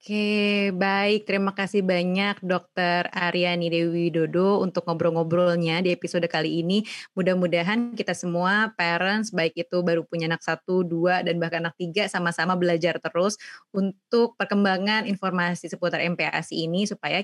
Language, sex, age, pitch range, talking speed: Indonesian, female, 20-39, 170-205 Hz, 140 wpm